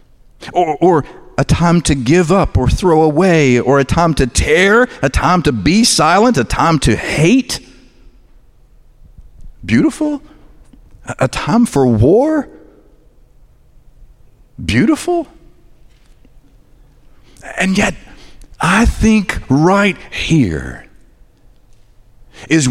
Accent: American